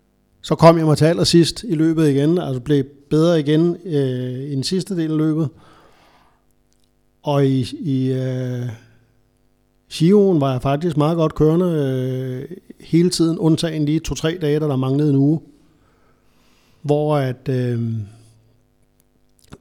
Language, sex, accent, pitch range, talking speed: Danish, male, native, 125-155 Hz, 140 wpm